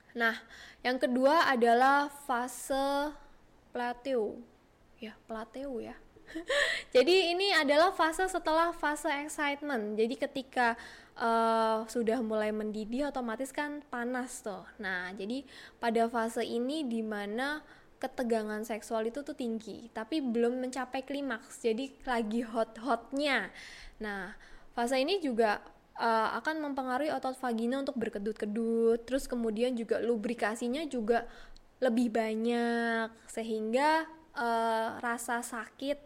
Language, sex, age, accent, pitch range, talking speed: Indonesian, female, 10-29, native, 230-285 Hz, 110 wpm